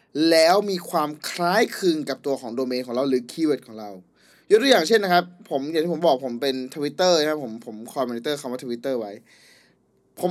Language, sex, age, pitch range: Thai, male, 20-39, 135-180 Hz